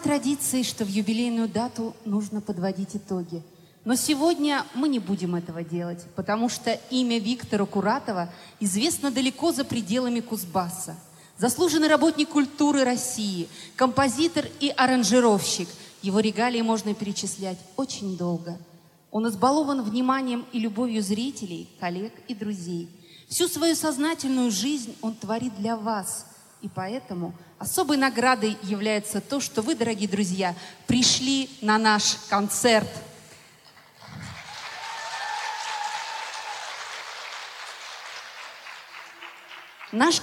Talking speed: 105 wpm